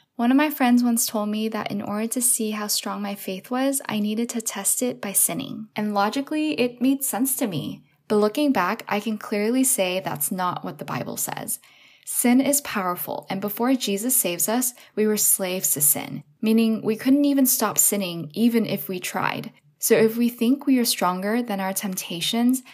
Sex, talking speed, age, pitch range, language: female, 205 wpm, 10-29, 190-235 Hz, English